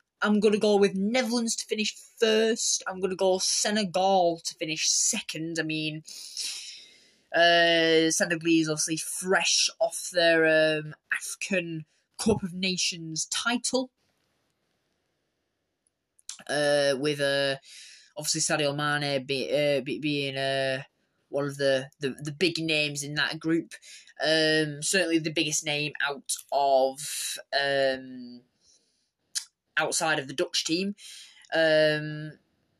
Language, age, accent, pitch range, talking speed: English, 10-29, British, 150-190 Hz, 125 wpm